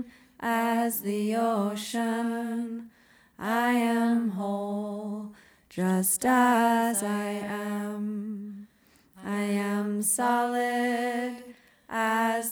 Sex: female